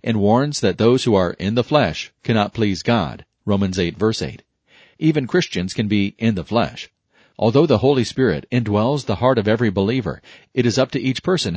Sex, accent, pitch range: male, American, 100-125 Hz